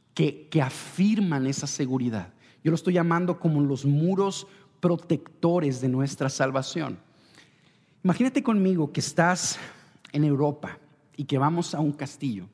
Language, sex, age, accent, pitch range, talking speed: Spanish, male, 50-69, Mexican, 135-175 Hz, 135 wpm